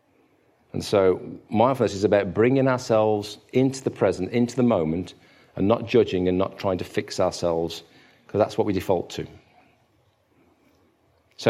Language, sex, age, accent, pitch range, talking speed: English, male, 40-59, British, 95-120 Hz, 150 wpm